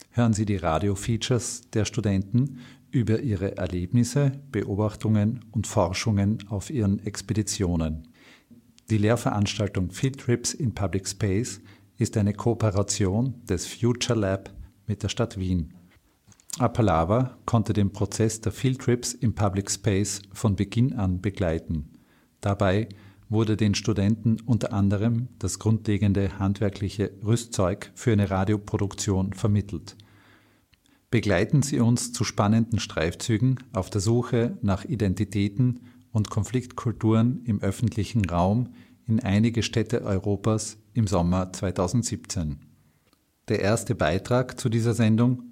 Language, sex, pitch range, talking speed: German, male, 100-120 Hz, 115 wpm